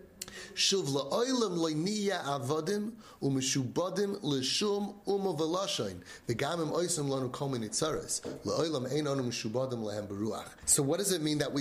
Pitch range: 120-155 Hz